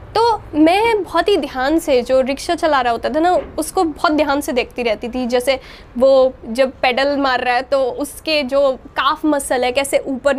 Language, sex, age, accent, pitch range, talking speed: Hindi, female, 20-39, native, 260-320 Hz, 200 wpm